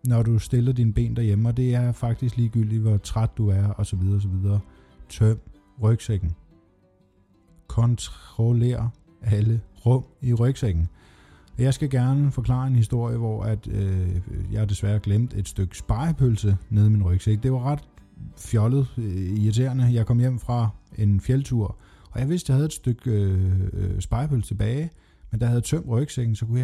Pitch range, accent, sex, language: 100-125 Hz, native, male, Danish